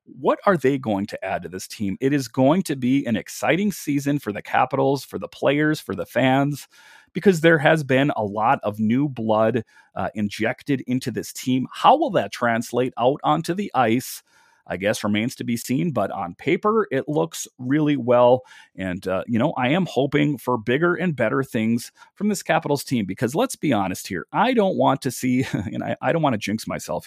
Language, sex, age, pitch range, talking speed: English, male, 40-59, 110-170 Hz, 210 wpm